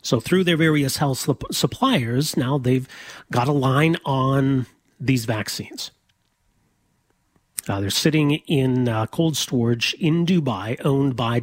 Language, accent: English, American